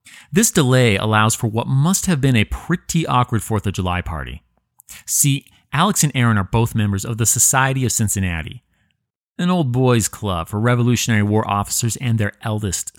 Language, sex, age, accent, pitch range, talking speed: English, male, 30-49, American, 95-135 Hz, 175 wpm